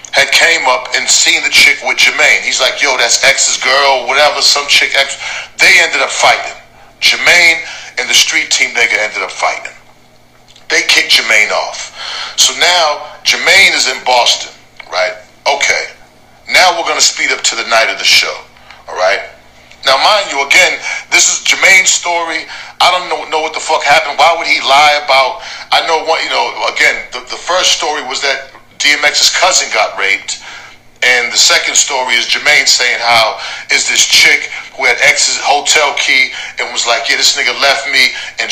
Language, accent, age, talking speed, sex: English, American, 40-59, 185 wpm, male